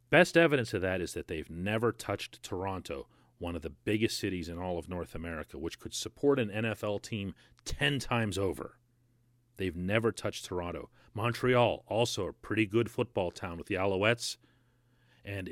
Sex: male